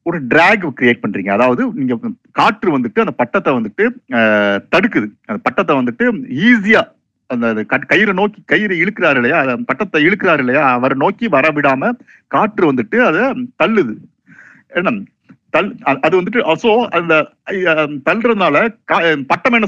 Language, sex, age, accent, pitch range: Tamil, male, 50-69, native, 145-230 Hz